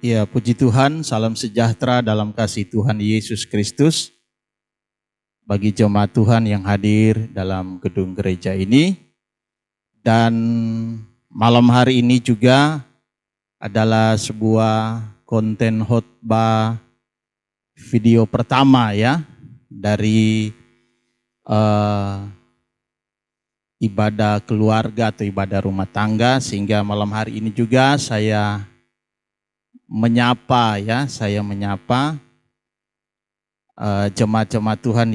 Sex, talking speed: male, 90 wpm